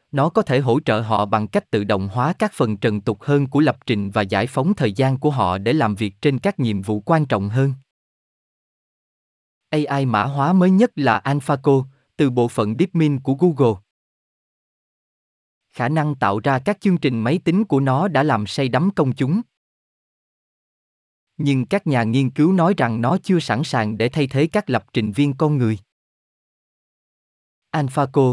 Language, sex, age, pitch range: Vietnamese, male, 20-39, 115-160 Hz